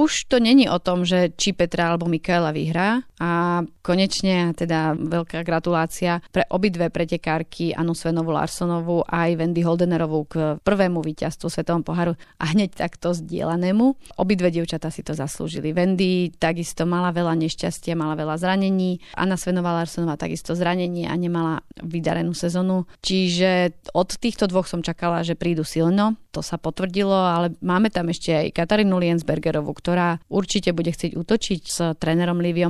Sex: female